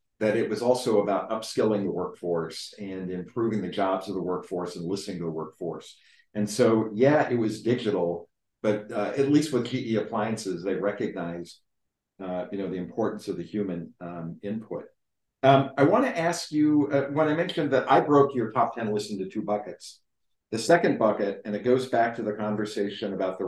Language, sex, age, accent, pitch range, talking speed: English, male, 50-69, American, 95-125 Hz, 190 wpm